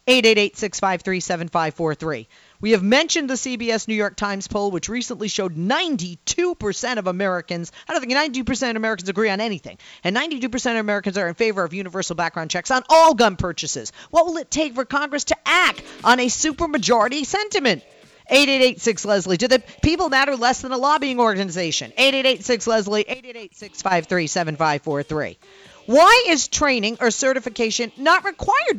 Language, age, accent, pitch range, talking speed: English, 40-59, American, 195-280 Hz, 165 wpm